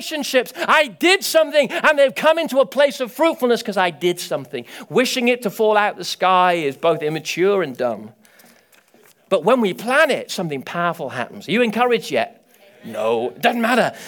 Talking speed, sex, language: 185 wpm, male, English